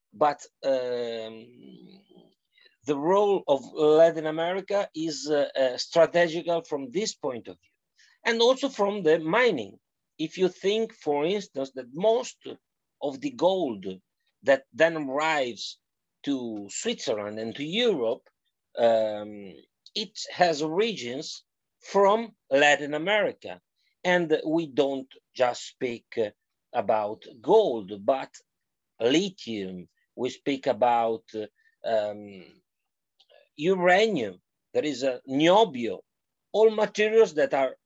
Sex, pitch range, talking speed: male, 130-195 Hz, 110 wpm